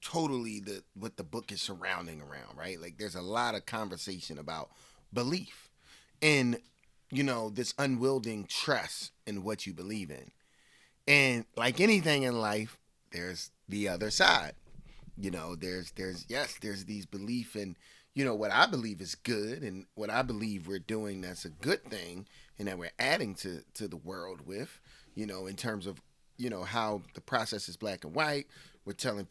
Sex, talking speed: male, 180 wpm